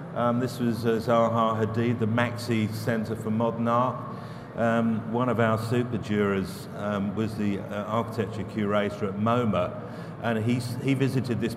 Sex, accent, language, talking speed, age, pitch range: male, British, English, 155 wpm, 50-69, 110-125 Hz